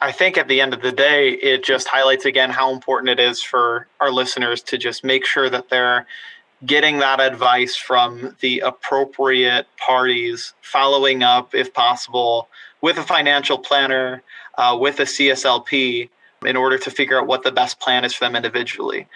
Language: English